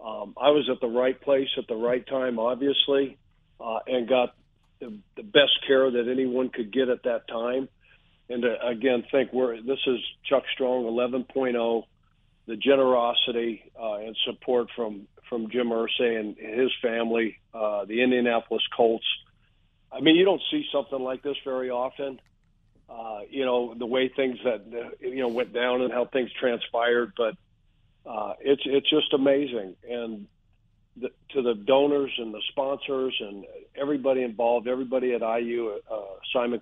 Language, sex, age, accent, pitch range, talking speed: English, male, 50-69, American, 115-135 Hz, 160 wpm